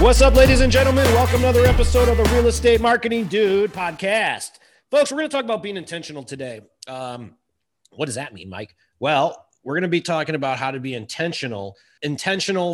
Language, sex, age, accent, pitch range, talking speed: English, male, 30-49, American, 125-200 Hz, 205 wpm